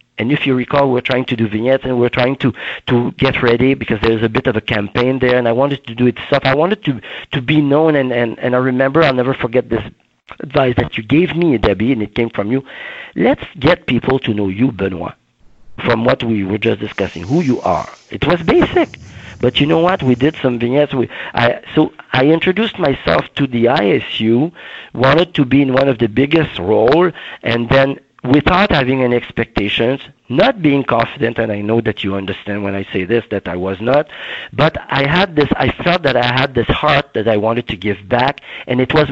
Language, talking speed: English, 225 wpm